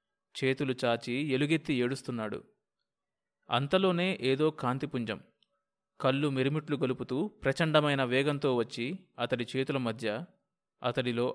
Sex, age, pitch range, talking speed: male, 20-39, 120-150 Hz, 90 wpm